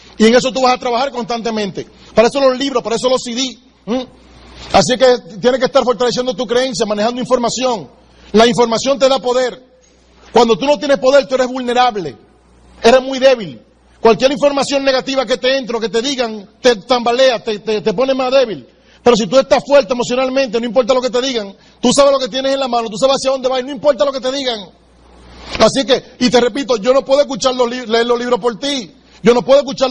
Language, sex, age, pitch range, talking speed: Spanish, male, 40-59, 235-270 Hz, 225 wpm